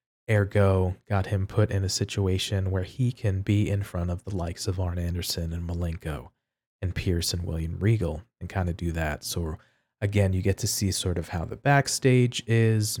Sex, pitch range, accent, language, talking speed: male, 95-115 Hz, American, English, 200 wpm